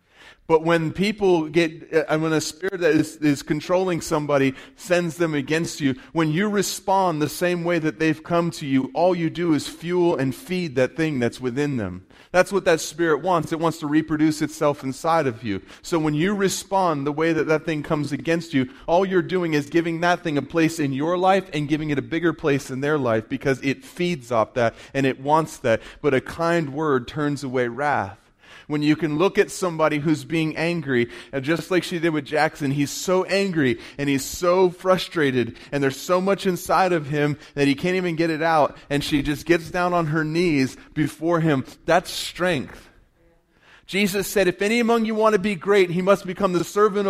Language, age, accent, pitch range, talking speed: English, 30-49, American, 145-180 Hz, 210 wpm